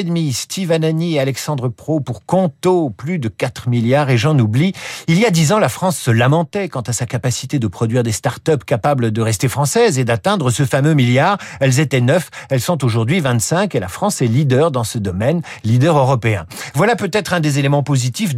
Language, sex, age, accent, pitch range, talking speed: French, male, 50-69, French, 125-180 Hz, 205 wpm